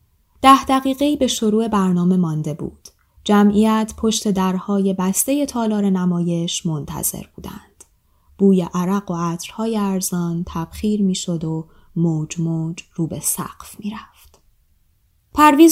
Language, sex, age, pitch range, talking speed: Persian, female, 20-39, 165-210 Hz, 115 wpm